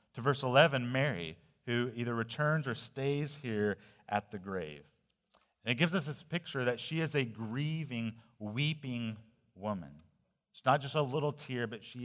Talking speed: 170 wpm